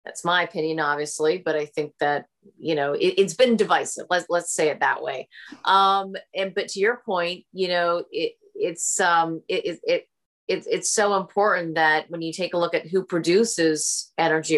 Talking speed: 195 wpm